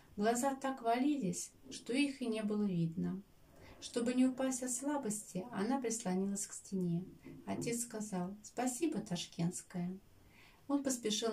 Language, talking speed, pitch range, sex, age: Russian, 125 wpm, 175-235 Hz, female, 30-49